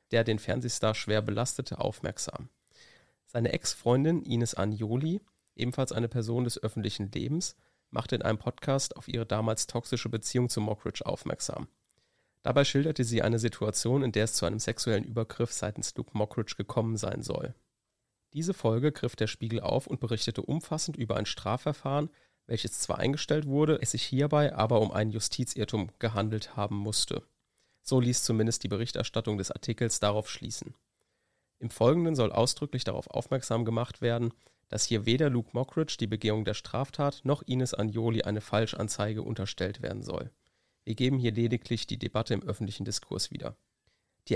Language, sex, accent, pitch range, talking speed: German, male, German, 110-130 Hz, 160 wpm